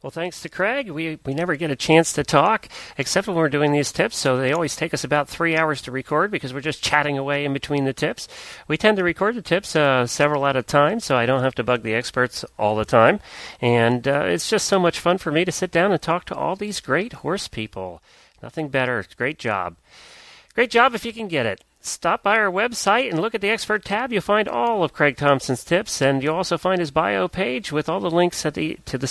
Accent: American